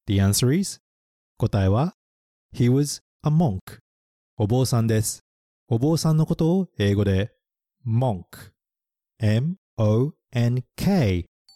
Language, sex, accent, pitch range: Japanese, male, native, 95-140 Hz